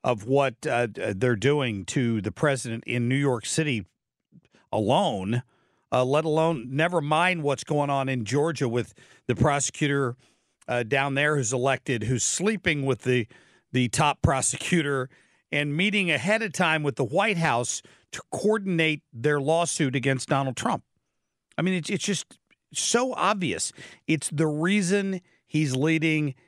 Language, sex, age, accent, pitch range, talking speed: English, male, 50-69, American, 120-155 Hz, 150 wpm